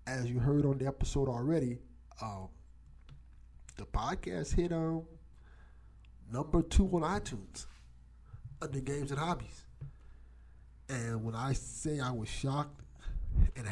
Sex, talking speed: male, 125 wpm